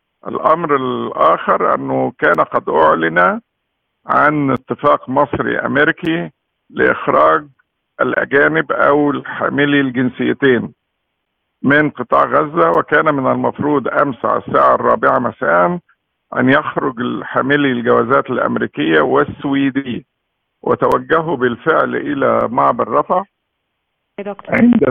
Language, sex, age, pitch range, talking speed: Arabic, male, 50-69, 120-145 Hz, 90 wpm